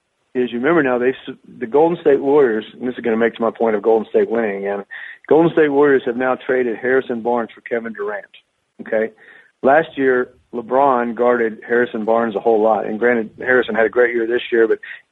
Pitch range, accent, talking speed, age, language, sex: 115-135 Hz, American, 220 wpm, 40-59, English, male